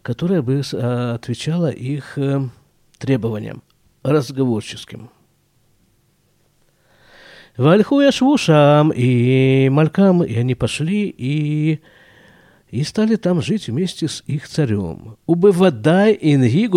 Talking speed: 80 wpm